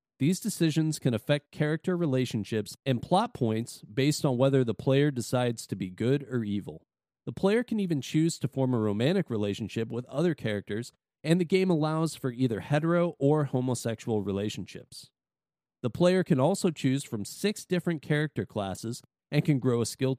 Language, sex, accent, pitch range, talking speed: English, male, American, 110-150 Hz, 170 wpm